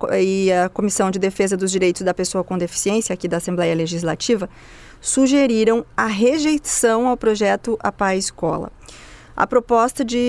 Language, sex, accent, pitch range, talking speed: Portuguese, female, Brazilian, 200-245 Hz, 145 wpm